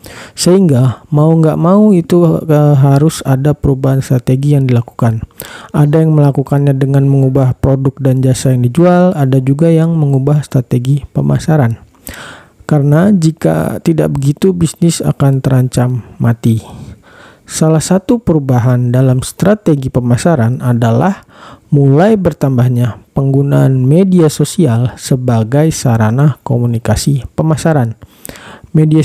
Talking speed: 110 wpm